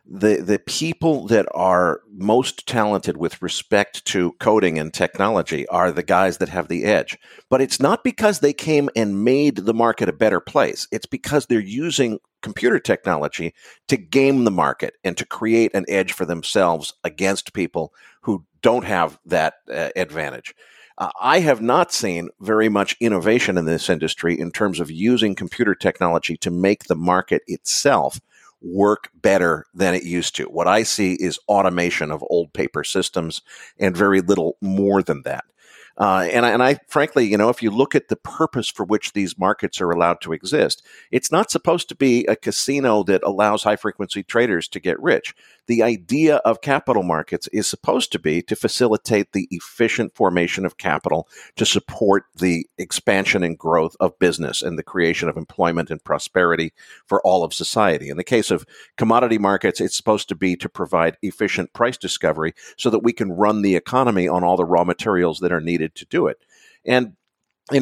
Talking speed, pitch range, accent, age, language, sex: 185 wpm, 90-120 Hz, American, 50-69, English, male